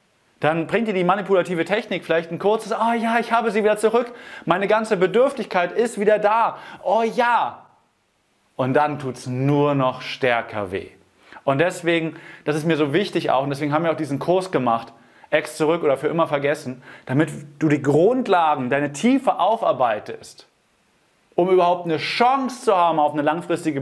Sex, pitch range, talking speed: male, 125-180 Hz, 175 wpm